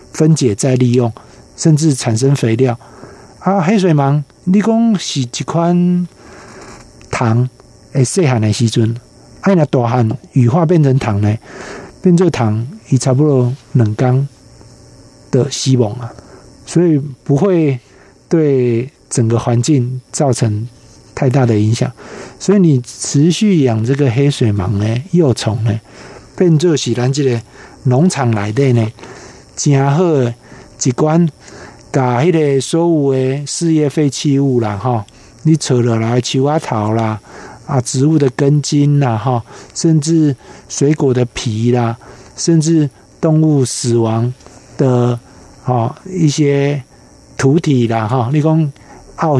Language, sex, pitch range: Chinese, male, 120-150 Hz